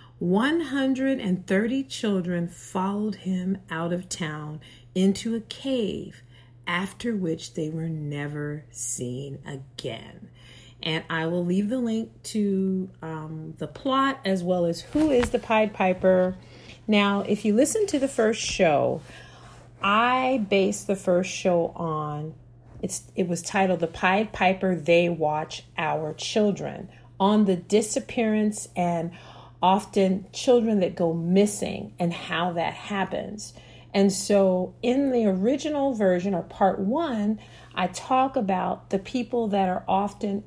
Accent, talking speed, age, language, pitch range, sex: American, 130 wpm, 40-59, English, 165-220 Hz, female